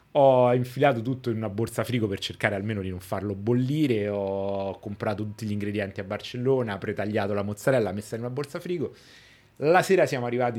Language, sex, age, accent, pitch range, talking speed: Italian, male, 30-49, native, 105-130 Hz, 195 wpm